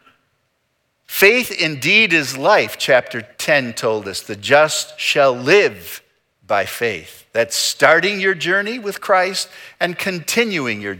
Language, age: English, 50-69